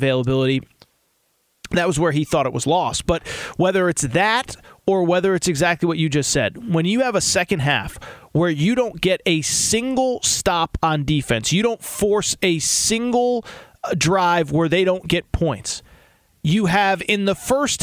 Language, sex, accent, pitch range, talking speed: English, male, American, 165-215 Hz, 175 wpm